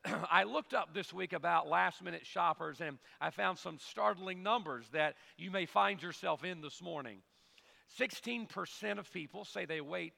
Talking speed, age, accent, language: 170 wpm, 40-59, American, English